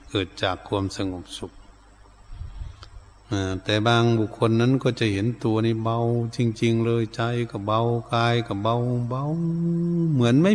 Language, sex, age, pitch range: Thai, male, 70-89, 100-115 Hz